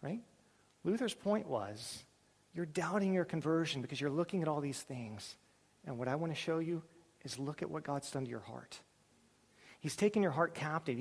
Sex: male